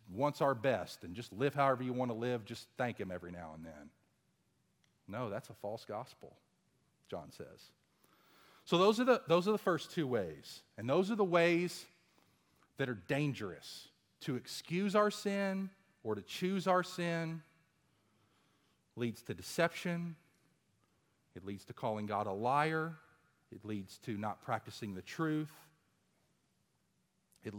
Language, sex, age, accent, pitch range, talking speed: English, male, 40-59, American, 105-175 Hz, 150 wpm